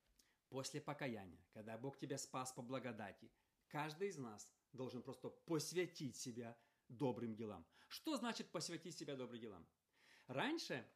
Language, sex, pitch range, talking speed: Russian, male, 125-175 Hz, 130 wpm